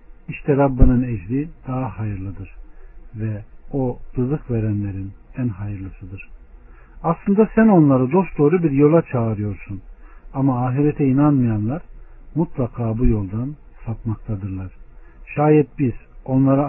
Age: 60-79